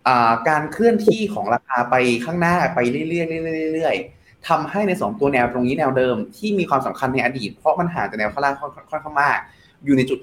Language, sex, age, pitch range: Thai, male, 20-39, 130-170 Hz